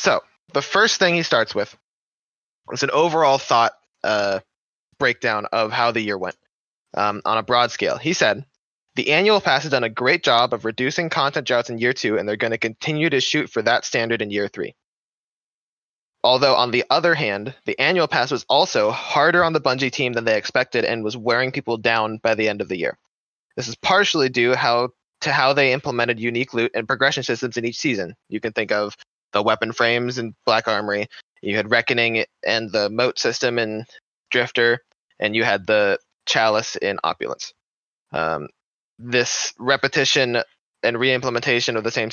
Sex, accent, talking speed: male, American, 190 wpm